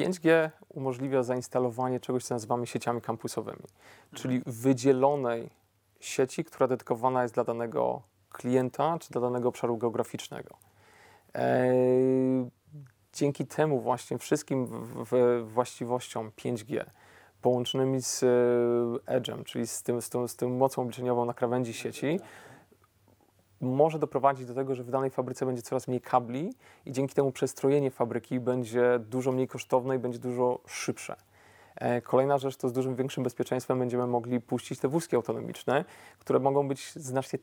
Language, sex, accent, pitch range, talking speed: Polish, male, native, 120-135 Hz, 130 wpm